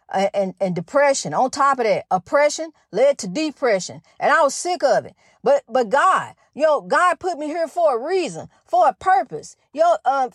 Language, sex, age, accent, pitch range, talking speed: English, female, 40-59, American, 285-355 Hz, 205 wpm